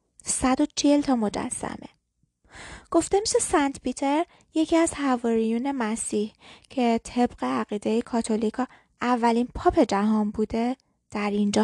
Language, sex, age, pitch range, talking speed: Persian, female, 20-39, 225-265 Hz, 110 wpm